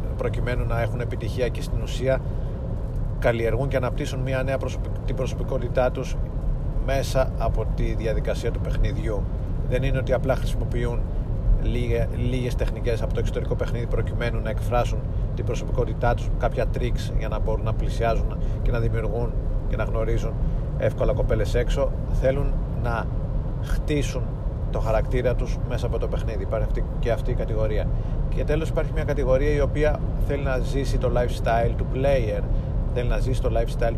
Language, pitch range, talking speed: Greek, 110-130 Hz, 160 wpm